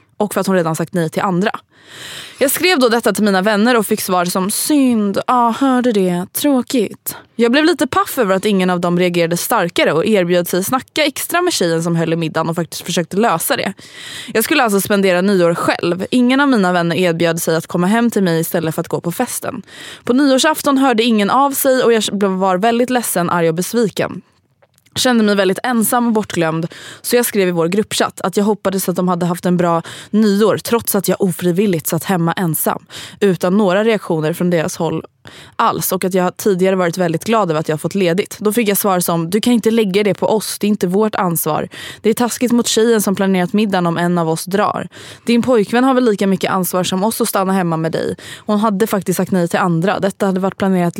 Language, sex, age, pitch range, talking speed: Swedish, female, 20-39, 175-225 Hz, 225 wpm